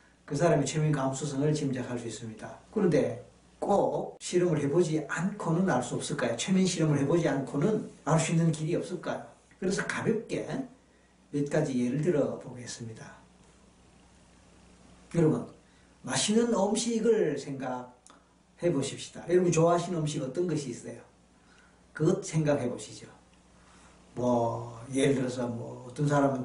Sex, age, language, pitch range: male, 40-59, Korean, 135-165 Hz